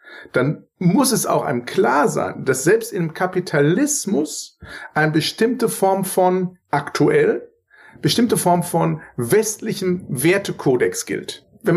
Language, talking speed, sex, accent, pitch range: German, 115 wpm, male, German, 150-205 Hz